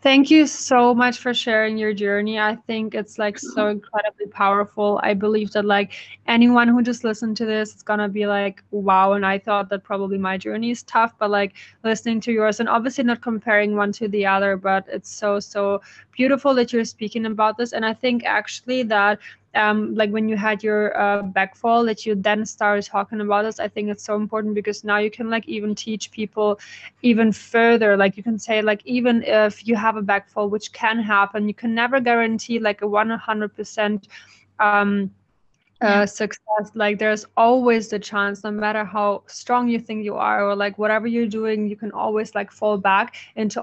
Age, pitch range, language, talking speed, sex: 20-39, 200-225 Hz, English, 200 wpm, female